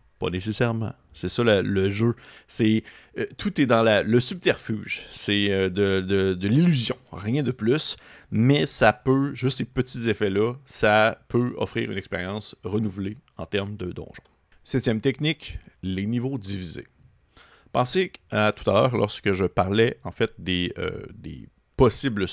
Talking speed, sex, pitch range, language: 145 wpm, male, 95-125 Hz, French